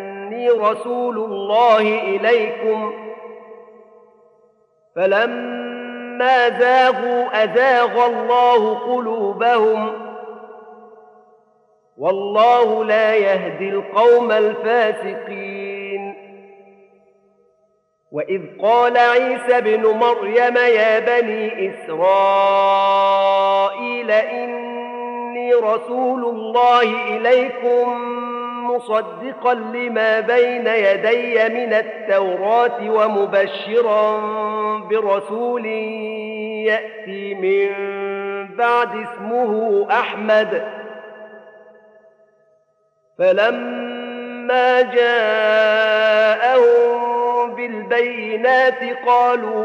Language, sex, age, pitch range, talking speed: Arabic, male, 40-59, 205-240 Hz, 50 wpm